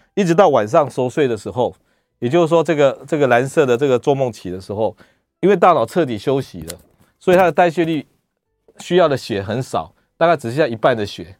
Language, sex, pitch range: Chinese, male, 115-165 Hz